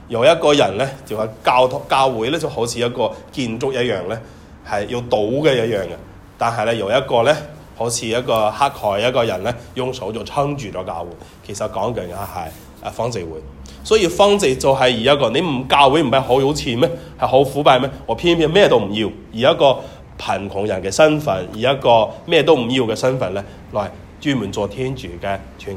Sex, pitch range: male, 95-150 Hz